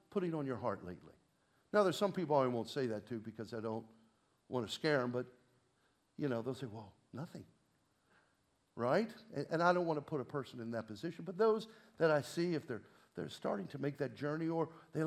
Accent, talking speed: American, 225 wpm